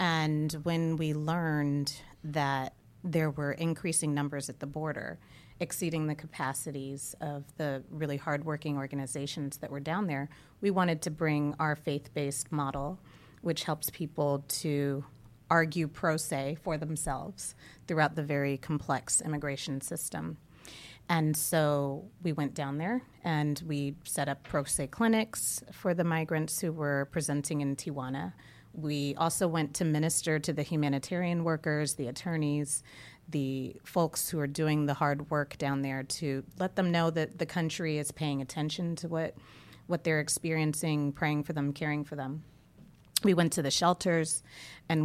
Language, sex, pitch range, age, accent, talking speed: English, female, 145-165 Hz, 30-49, American, 155 wpm